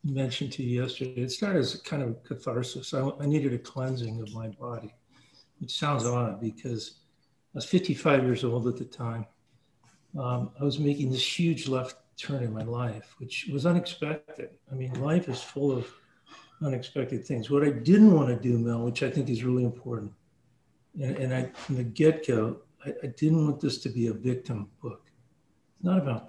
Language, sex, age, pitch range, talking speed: English, male, 60-79, 125-150 Hz, 190 wpm